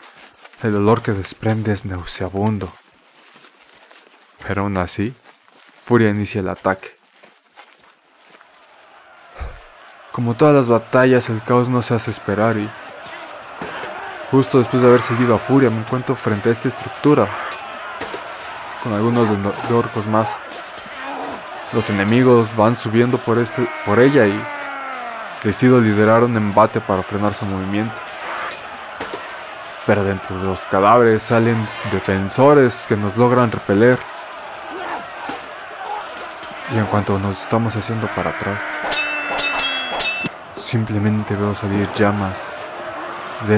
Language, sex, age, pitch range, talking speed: Spanish, male, 20-39, 100-120 Hz, 115 wpm